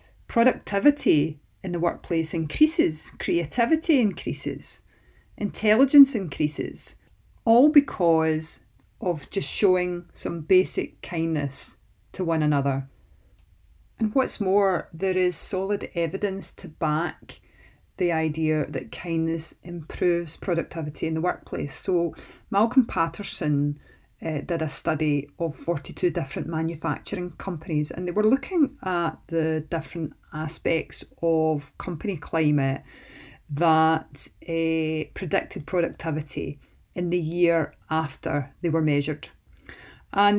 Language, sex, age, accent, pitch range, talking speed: English, female, 40-59, British, 155-185 Hz, 110 wpm